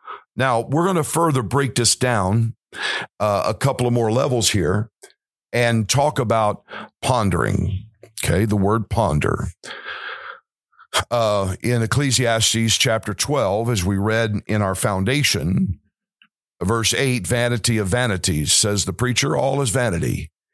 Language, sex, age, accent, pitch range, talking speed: English, male, 50-69, American, 105-125 Hz, 130 wpm